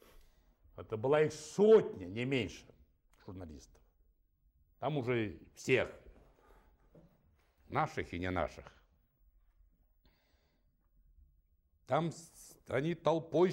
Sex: male